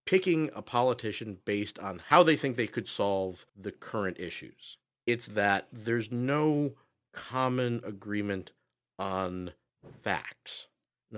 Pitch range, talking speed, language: 105-145 Hz, 120 wpm, English